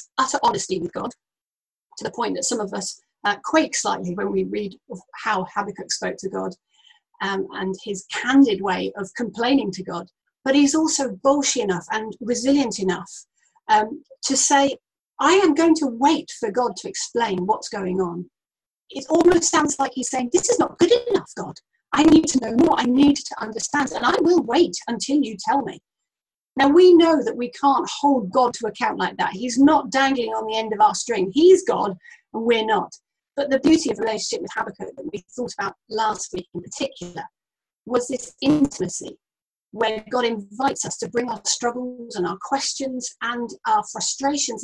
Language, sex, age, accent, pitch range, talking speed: English, female, 40-59, British, 220-295 Hz, 190 wpm